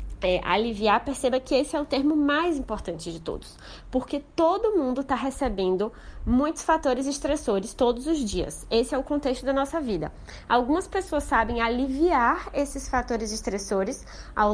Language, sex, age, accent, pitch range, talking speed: Portuguese, female, 20-39, Brazilian, 210-290 Hz, 155 wpm